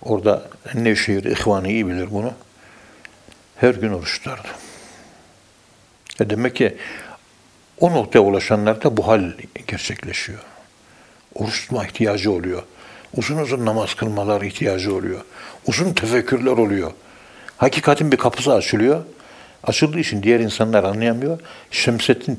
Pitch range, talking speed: 105-120 Hz, 110 wpm